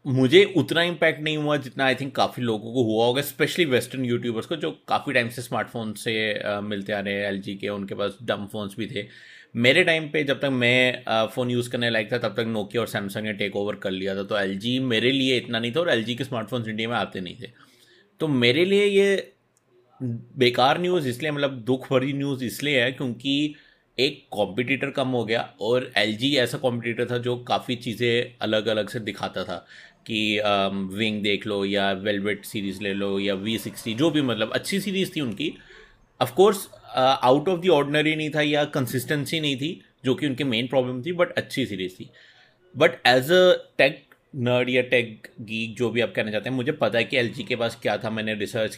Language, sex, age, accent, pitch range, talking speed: Hindi, male, 30-49, native, 110-135 Hz, 210 wpm